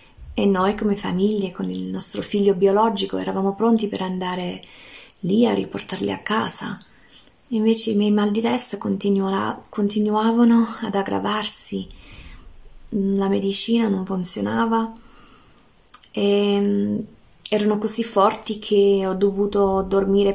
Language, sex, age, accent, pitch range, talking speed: Italian, female, 20-39, native, 195-225 Hz, 115 wpm